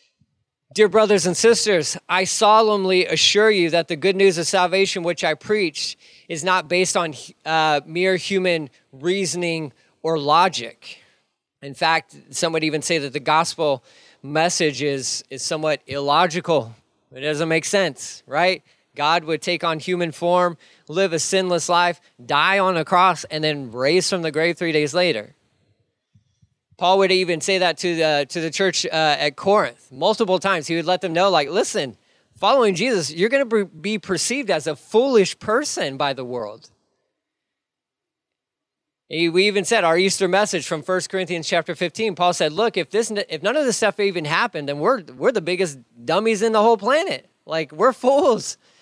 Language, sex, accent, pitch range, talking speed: English, male, American, 160-205 Hz, 175 wpm